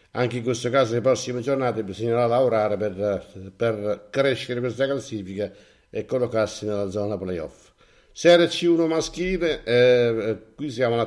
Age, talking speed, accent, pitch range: 60-79, 140 wpm, native, 110-135 Hz